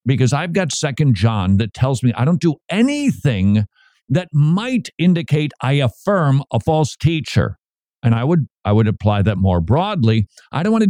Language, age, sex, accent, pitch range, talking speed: English, 50-69, male, American, 115-165 Hz, 180 wpm